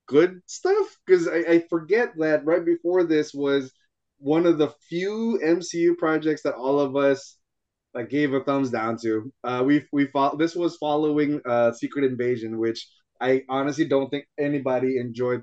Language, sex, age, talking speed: English, male, 20-39, 170 wpm